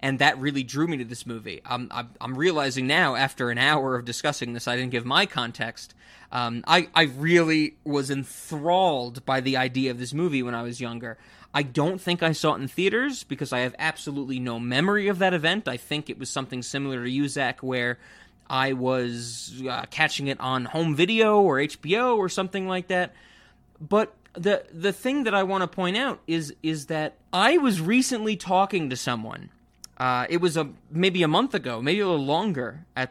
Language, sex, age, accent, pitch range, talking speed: English, male, 20-39, American, 125-185 Hz, 200 wpm